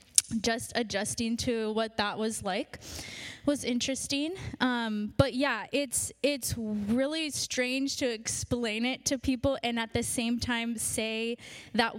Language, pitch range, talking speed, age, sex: English, 220-255 Hz, 140 wpm, 10-29, female